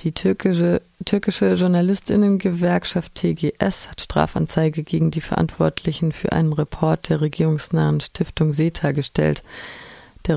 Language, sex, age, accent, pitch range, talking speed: German, female, 30-49, German, 155-185 Hz, 110 wpm